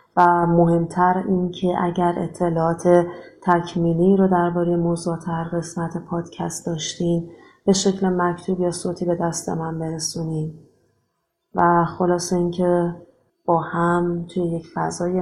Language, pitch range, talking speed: Persian, 170-200 Hz, 125 wpm